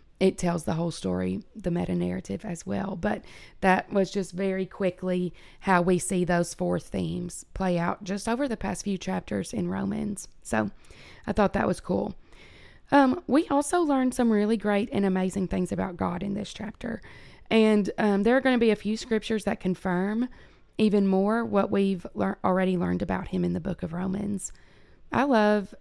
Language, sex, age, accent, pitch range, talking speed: English, female, 20-39, American, 185-225 Hz, 185 wpm